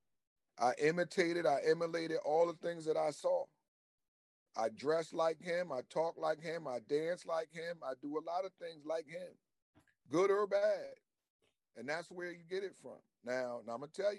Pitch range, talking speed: 125-165 Hz, 190 wpm